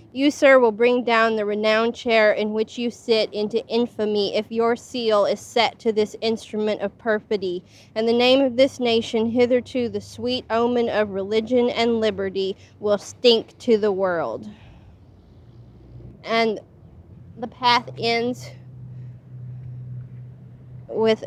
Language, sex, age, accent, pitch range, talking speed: English, female, 20-39, American, 200-235 Hz, 135 wpm